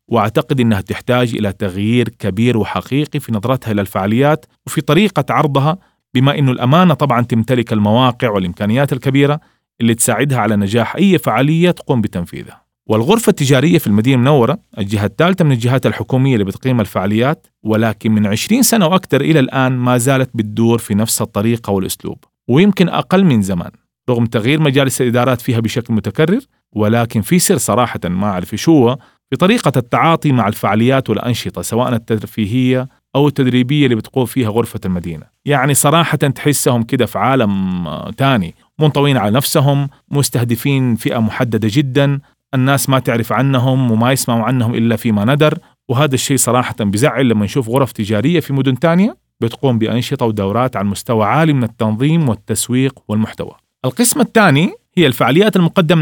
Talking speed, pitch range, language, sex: 150 wpm, 110-145 Hz, Arabic, male